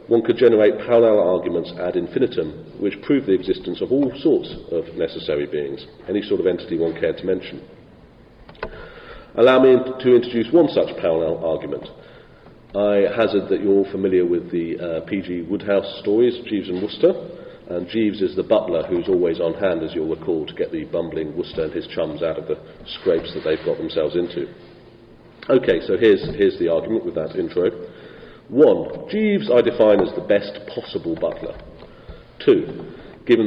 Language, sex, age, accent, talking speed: English, male, 40-59, British, 175 wpm